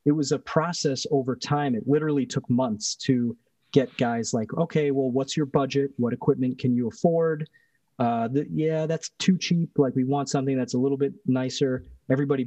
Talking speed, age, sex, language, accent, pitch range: 190 wpm, 30-49, male, English, American, 125-145 Hz